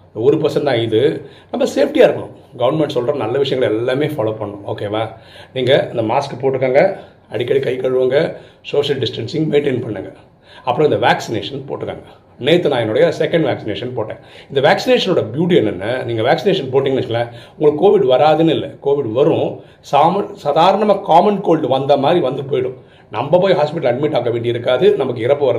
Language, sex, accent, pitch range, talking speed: Tamil, male, native, 120-180 Hz, 75 wpm